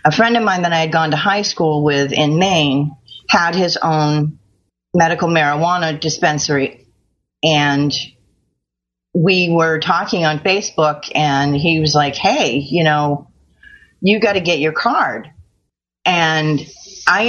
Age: 40-59